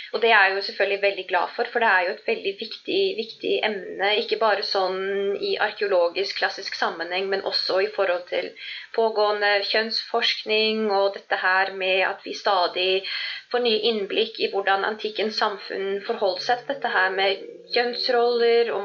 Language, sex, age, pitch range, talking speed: Swedish, female, 20-39, 195-265 Hz, 165 wpm